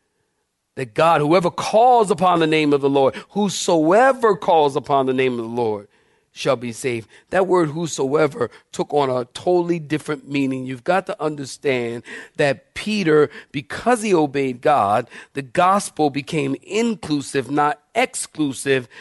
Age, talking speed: 40-59, 145 wpm